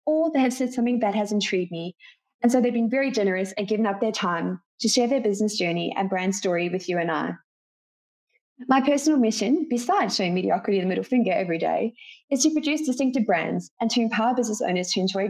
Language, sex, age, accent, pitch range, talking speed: English, female, 20-39, Australian, 190-255 Hz, 220 wpm